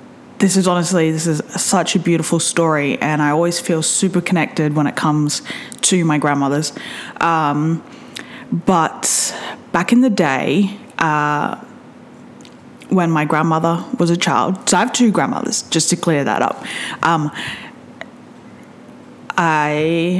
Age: 20-39